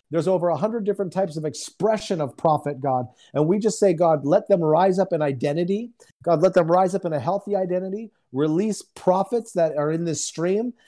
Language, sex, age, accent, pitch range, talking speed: English, male, 40-59, American, 150-195 Hz, 210 wpm